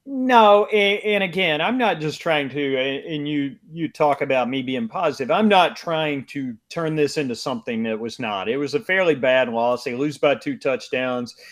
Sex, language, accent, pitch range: male, English, American, 130-165 Hz